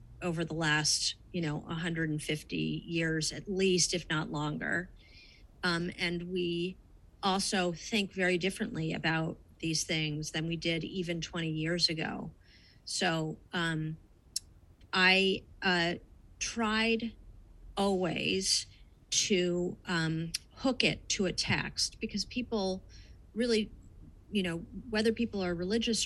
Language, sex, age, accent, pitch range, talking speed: English, female, 30-49, American, 160-195 Hz, 115 wpm